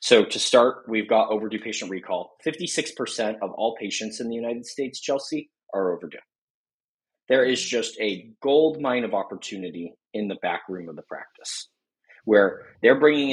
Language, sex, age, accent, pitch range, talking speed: English, male, 30-49, American, 105-145 Hz, 165 wpm